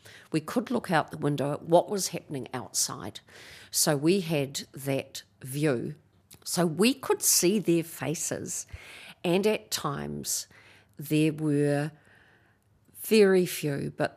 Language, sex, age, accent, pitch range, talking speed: English, female, 50-69, Australian, 130-165 Hz, 125 wpm